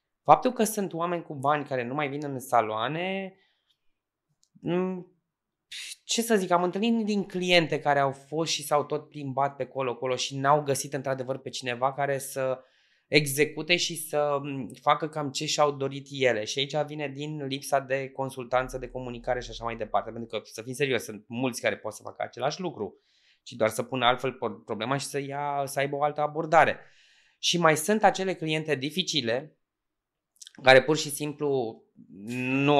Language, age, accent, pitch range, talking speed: Romanian, 20-39, native, 125-155 Hz, 175 wpm